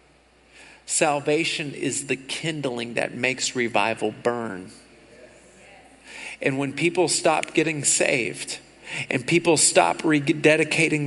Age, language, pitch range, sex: 50-69, English, 145-180 Hz, male